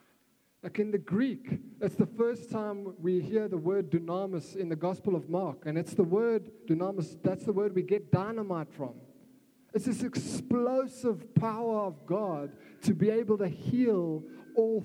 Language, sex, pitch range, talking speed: English, male, 170-225 Hz, 170 wpm